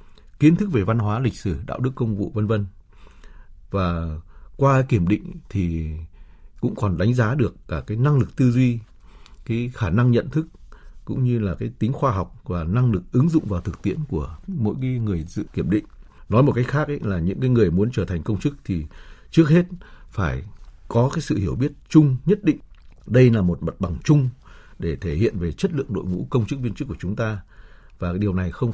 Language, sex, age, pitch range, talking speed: Vietnamese, male, 60-79, 90-130 Hz, 220 wpm